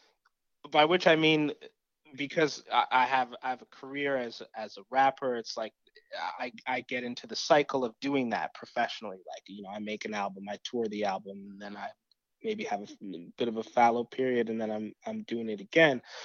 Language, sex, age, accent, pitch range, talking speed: English, male, 20-39, American, 115-140 Hz, 210 wpm